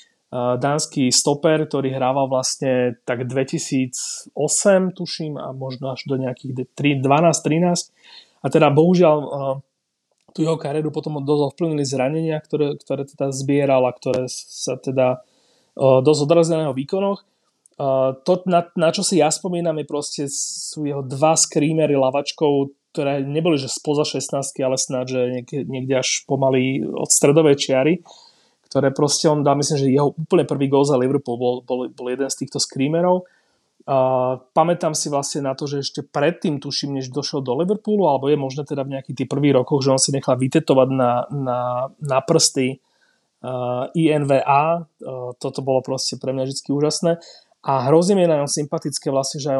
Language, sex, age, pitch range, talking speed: Slovak, male, 30-49, 130-155 Hz, 155 wpm